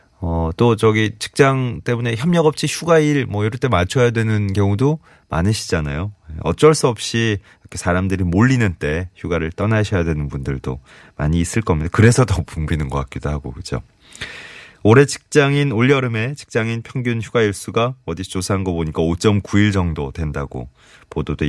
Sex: male